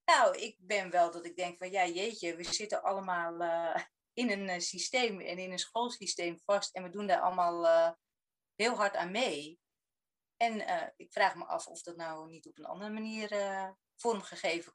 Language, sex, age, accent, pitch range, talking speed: Dutch, female, 30-49, Dutch, 175-220 Hz, 195 wpm